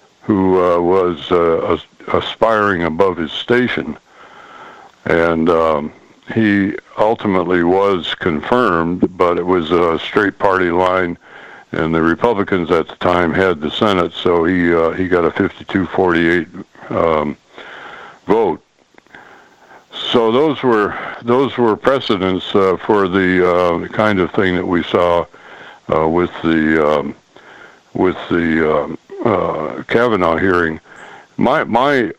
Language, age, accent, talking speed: English, 60-79, American, 125 wpm